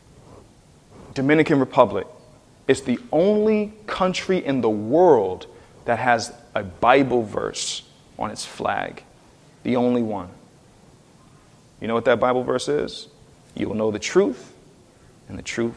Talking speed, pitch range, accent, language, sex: 135 wpm, 125-210 Hz, American, English, male